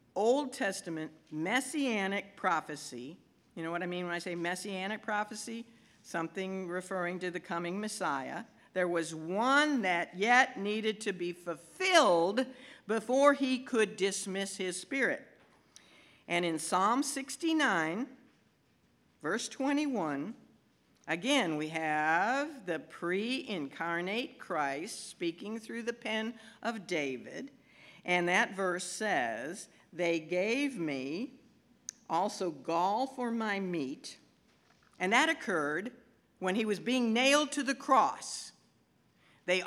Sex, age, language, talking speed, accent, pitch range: female, 60-79, English, 115 wpm, American, 170-235 Hz